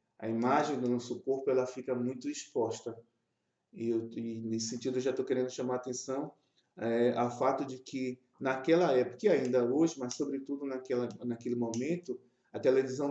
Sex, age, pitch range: male, 20-39, 115-140 Hz